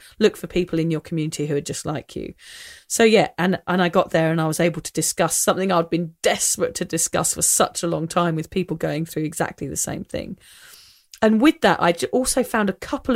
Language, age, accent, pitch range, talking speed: English, 40-59, British, 165-220 Hz, 235 wpm